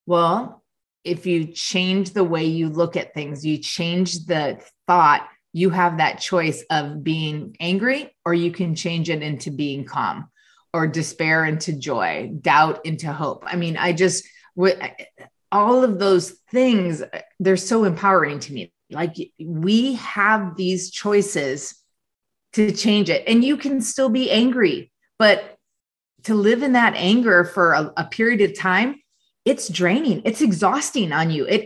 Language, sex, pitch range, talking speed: English, female, 170-225 Hz, 155 wpm